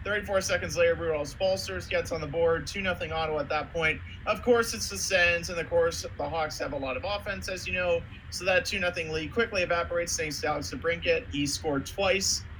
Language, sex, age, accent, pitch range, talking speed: English, male, 30-49, American, 145-185 Hz, 225 wpm